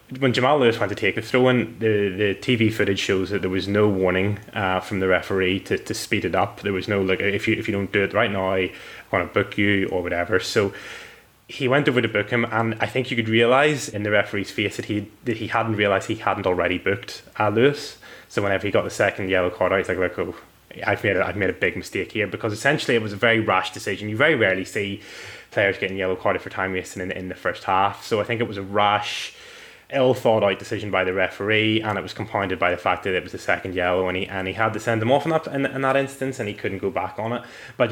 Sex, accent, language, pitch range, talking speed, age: male, British, English, 95-115 Hz, 270 wpm, 20-39